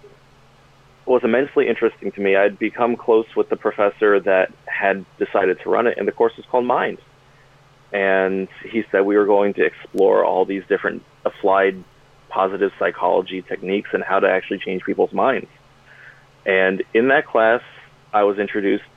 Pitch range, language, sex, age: 100-140 Hz, English, male, 30-49